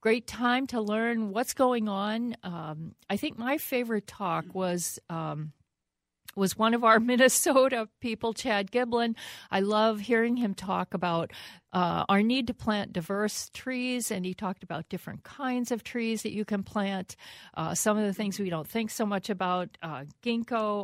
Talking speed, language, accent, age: 175 wpm, English, American, 50-69